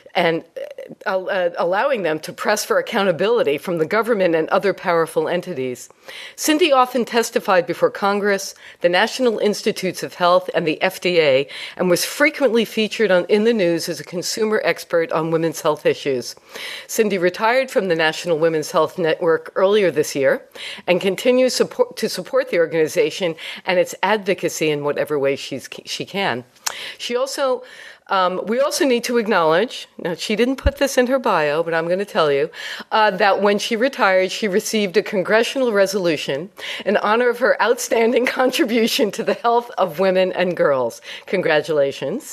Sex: female